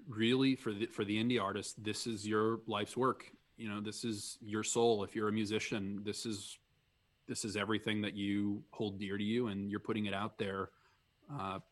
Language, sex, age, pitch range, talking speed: English, male, 20-39, 105-120 Hz, 205 wpm